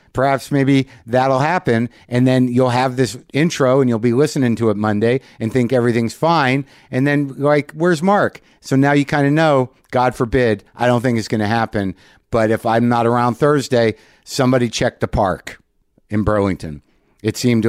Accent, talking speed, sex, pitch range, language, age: American, 185 wpm, male, 105-130 Hz, English, 50-69